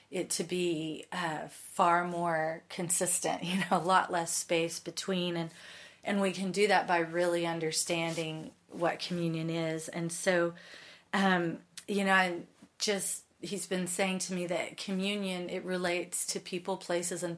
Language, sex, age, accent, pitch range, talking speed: English, female, 30-49, American, 165-190 Hz, 160 wpm